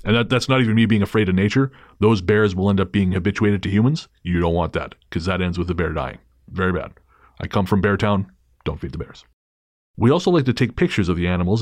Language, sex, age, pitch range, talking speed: English, male, 30-49, 85-110 Hz, 255 wpm